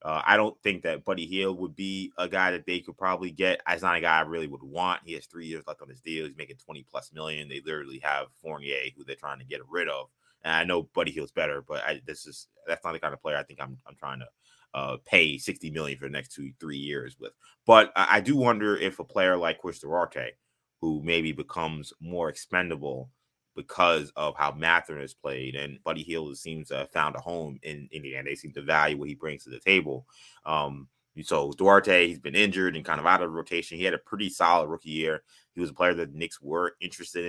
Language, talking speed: English, 245 wpm